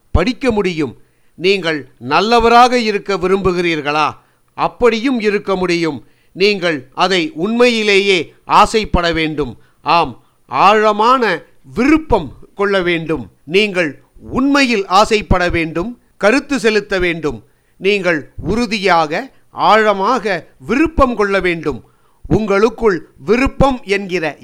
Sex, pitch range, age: male, 175-220 Hz, 50-69